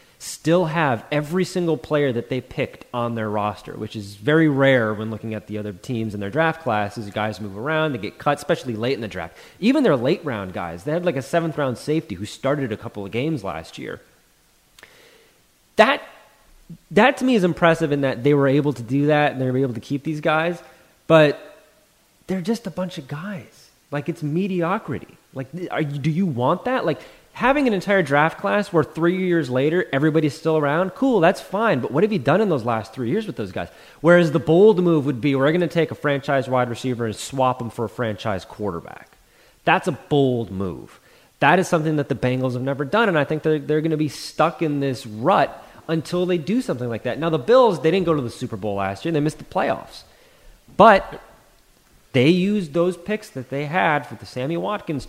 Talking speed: 220 wpm